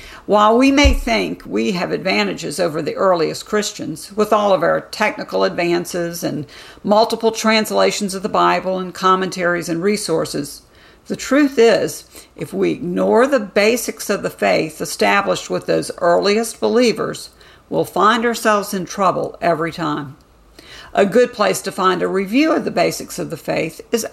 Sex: female